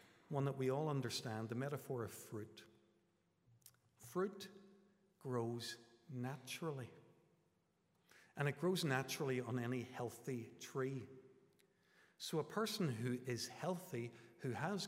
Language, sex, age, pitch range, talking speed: English, male, 50-69, 115-140 Hz, 115 wpm